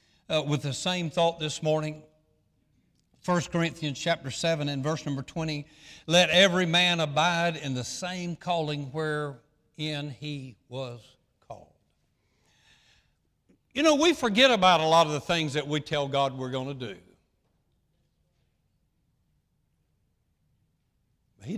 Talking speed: 130 wpm